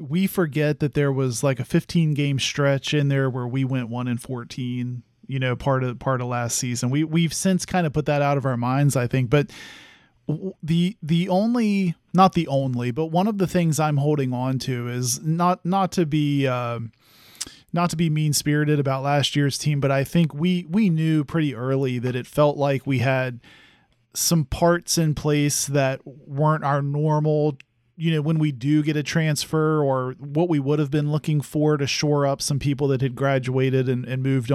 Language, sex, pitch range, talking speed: English, male, 130-155 Hz, 205 wpm